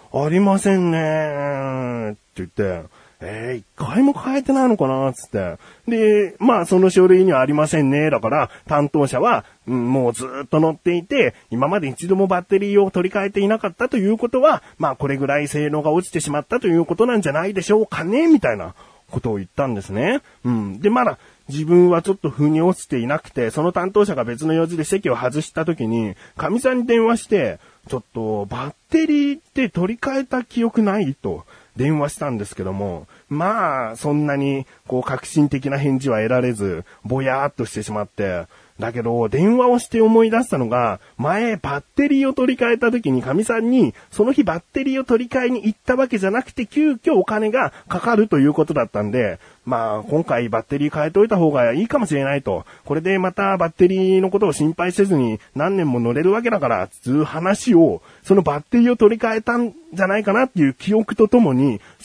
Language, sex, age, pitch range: Japanese, male, 30-49, 135-225 Hz